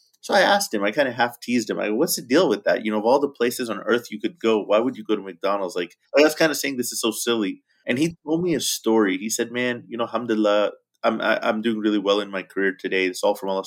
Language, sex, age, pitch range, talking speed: English, male, 30-49, 110-140 Hz, 310 wpm